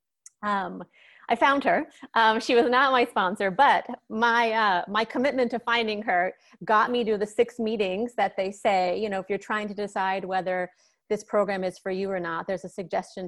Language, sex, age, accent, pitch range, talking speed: English, female, 30-49, American, 180-215 Hz, 205 wpm